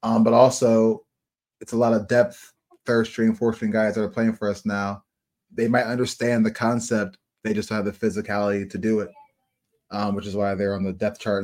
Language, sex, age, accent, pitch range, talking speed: English, male, 20-39, American, 100-120 Hz, 210 wpm